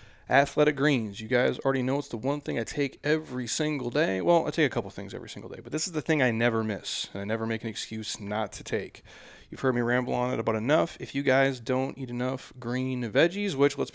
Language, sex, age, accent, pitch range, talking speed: English, male, 30-49, American, 110-130 Hz, 255 wpm